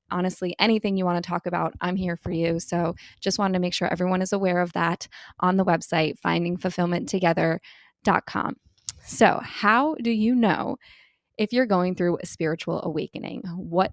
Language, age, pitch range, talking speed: English, 20-39, 175-220 Hz, 170 wpm